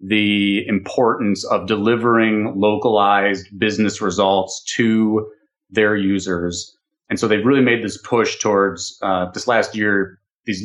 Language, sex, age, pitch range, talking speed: English, male, 30-49, 100-120 Hz, 130 wpm